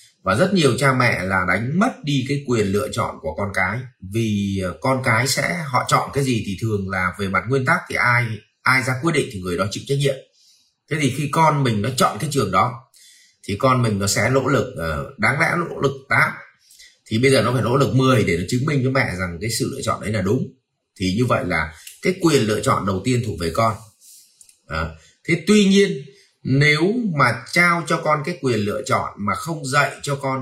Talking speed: 235 wpm